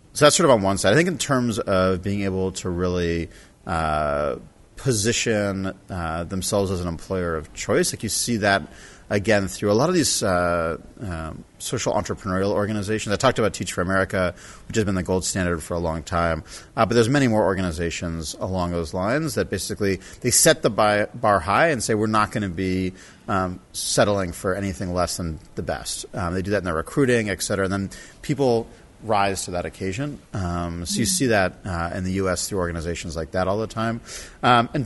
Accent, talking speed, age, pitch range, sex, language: American, 210 wpm, 30-49, 90-110 Hz, male, English